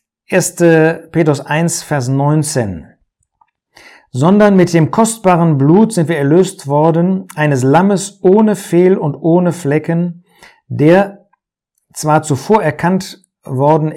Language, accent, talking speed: German, German, 110 wpm